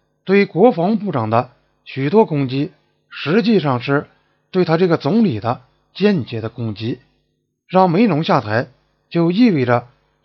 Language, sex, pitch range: Chinese, male, 130-185 Hz